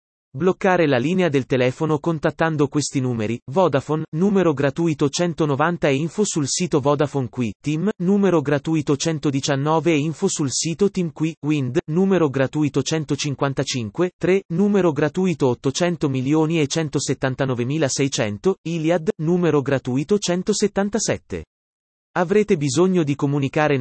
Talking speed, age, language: 110 wpm, 30-49, Italian